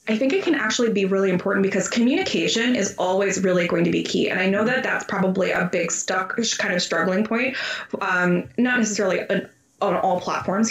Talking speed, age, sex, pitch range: 195 wpm, 20-39, female, 175-220 Hz